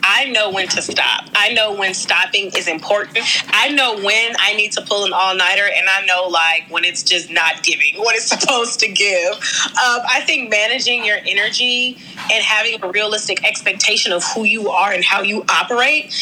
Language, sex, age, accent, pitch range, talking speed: English, female, 30-49, American, 185-225 Hz, 195 wpm